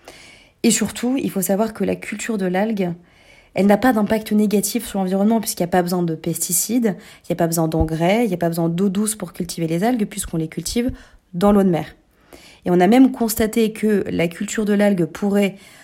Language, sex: French, female